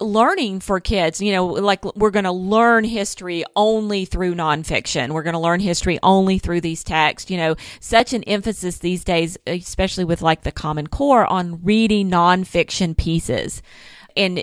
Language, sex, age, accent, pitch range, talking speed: English, female, 40-59, American, 165-205 Hz, 170 wpm